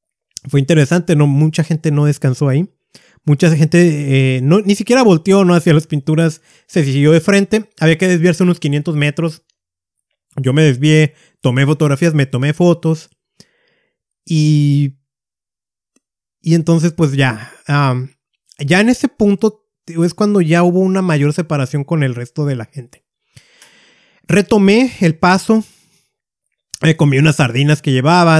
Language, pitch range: Spanish, 145-180 Hz